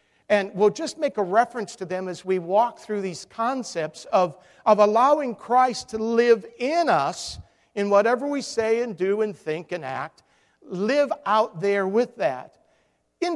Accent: American